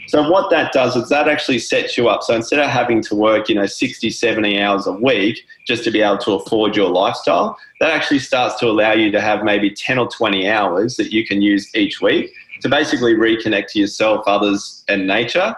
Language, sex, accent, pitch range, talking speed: English, male, Australian, 100-145 Hz, 225 wpm